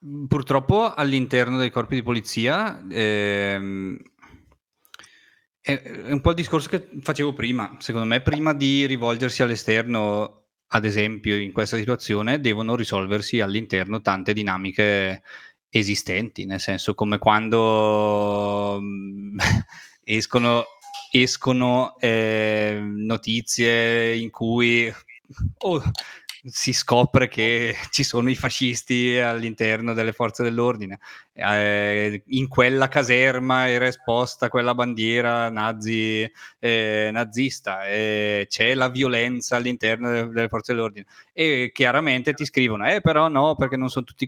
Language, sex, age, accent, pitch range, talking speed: Italian, male, 20-39, native, 110-130 Hz, 110 wpm